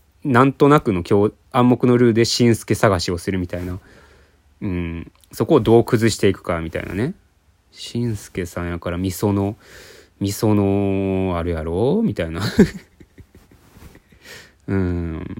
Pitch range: 80-95 Hz